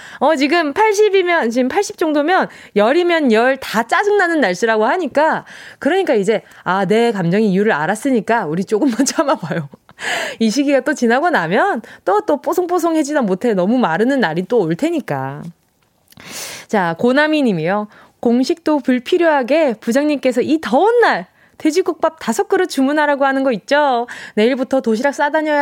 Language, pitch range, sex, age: Korean, 205-295 Hz, female, 20-39